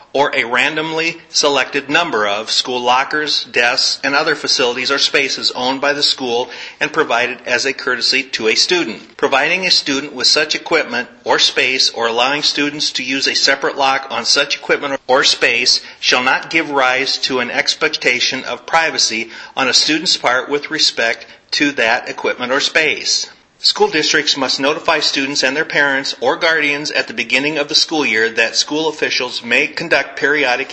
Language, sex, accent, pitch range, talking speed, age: English, male, American, 125-150 Hz, 175 wpm, 40-59